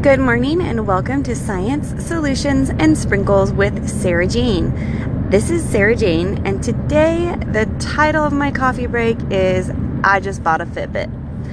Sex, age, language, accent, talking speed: female, 20-39, English, American, 155 wpm